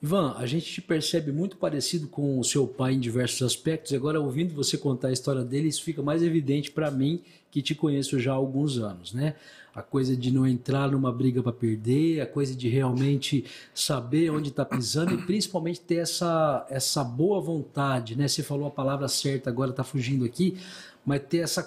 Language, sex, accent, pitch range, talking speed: Portuguese, male, Brazilian, 130-160 Hz, 200 wpm